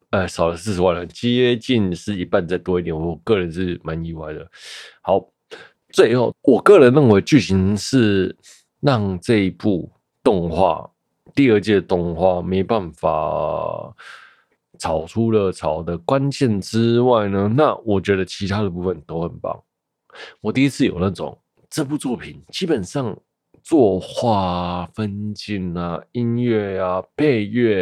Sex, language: male, Chinese